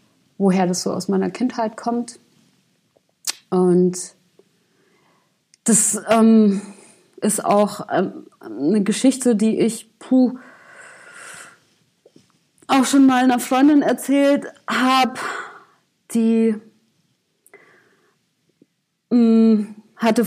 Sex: female